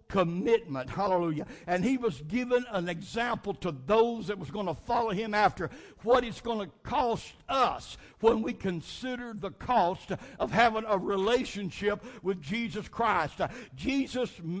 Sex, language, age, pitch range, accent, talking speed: male, English, 60-79, 185-245 Hz, American, 150 wpm